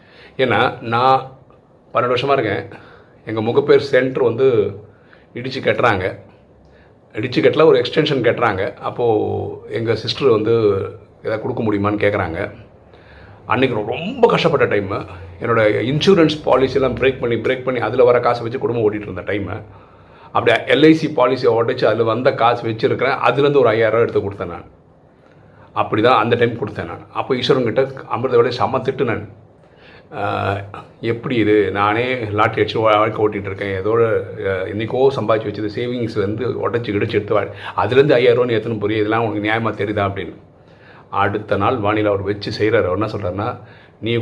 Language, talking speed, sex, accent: Tamil, 140 wpm, male, native